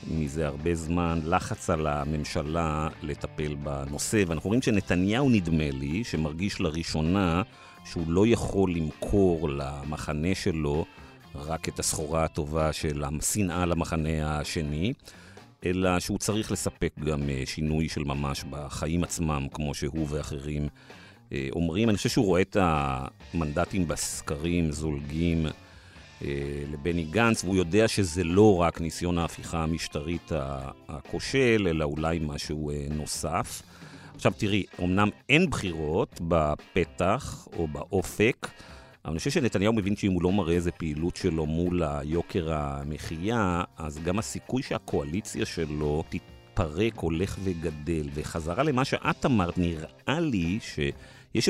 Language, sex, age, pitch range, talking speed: Hebrew, male, 50-69, 75-95 Hz, 120 wpm